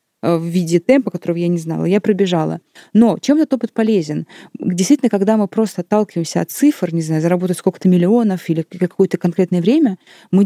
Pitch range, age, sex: 175-235 Hz, 20-39, female